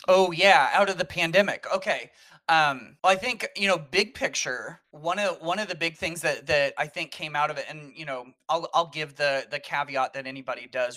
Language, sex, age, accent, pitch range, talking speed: English, male, 30-49, American, 130-160 Hz, 230 wpm